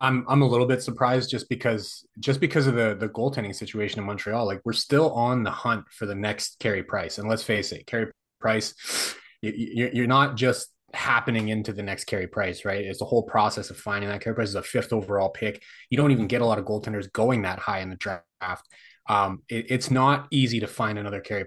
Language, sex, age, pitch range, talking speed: English, male, 30-49, 100-115 Hz, 230 wpm